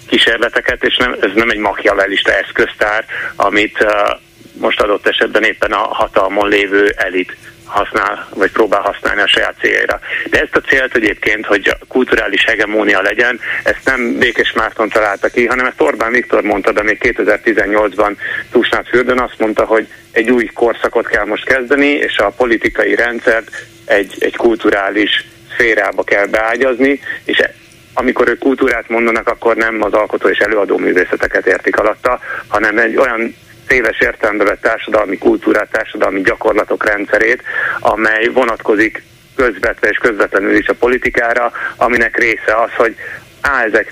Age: 30-49